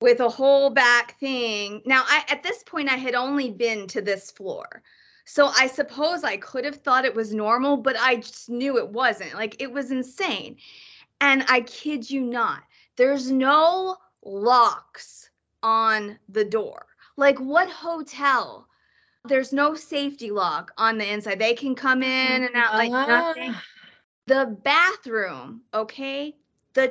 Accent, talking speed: American, 155 wpm